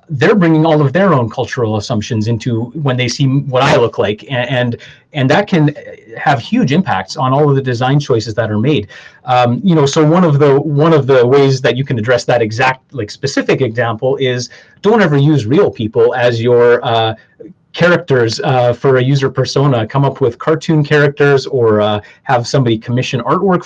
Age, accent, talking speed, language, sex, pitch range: 30-49, American, 200 wpm, English, male, 120-150 Hz